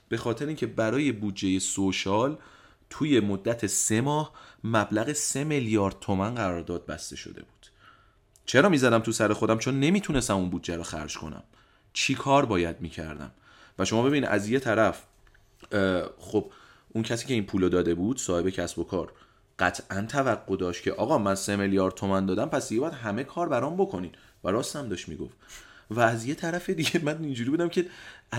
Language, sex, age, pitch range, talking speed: Persian, male, 30-49, 95-135 Hz, 175 wpm